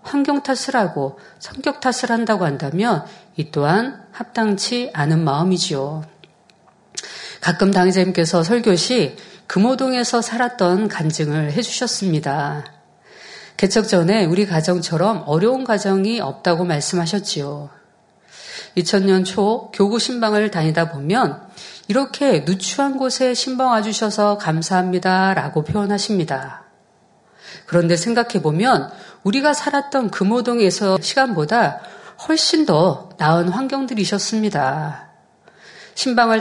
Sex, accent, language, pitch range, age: female, native, Korean, 170-235 Hz, 40-59